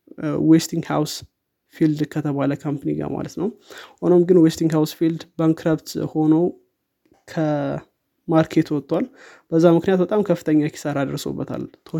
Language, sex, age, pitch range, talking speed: Amharic, male, 20-39, 150-165 Hz, 110 wpm